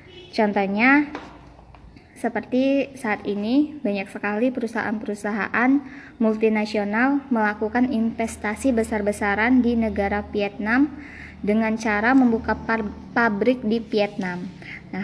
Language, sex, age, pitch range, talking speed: Indonesian, male, 20-39, 210-250 Hz, 85 wpm